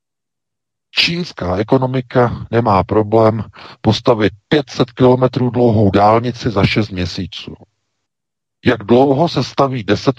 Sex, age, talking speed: male, 50-69, 100 wpm